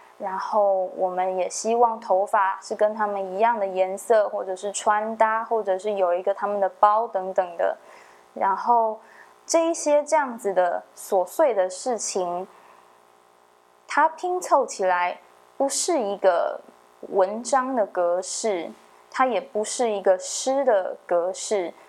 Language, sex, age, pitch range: Chinese, female, 20-39, 180-220 Hz